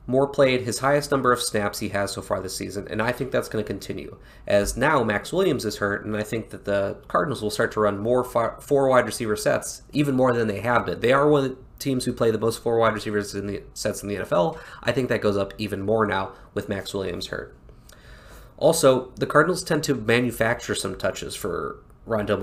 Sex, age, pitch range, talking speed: male, 20-39, 105-140 Hz, 240 wpm